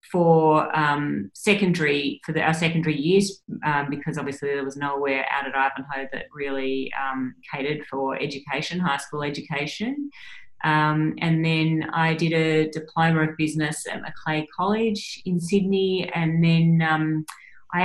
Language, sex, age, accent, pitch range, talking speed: English, female, 30-49, Australian, 145-170 Hz, 150 wpm